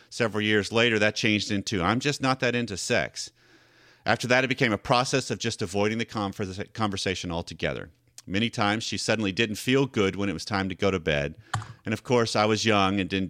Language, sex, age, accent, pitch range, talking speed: English, male, 40-59, American, 95-120 Hz, 210 wpm